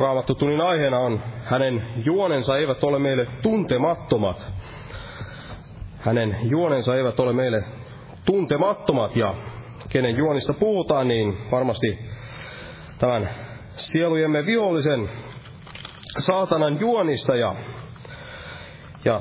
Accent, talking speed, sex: native, 90 wpm, male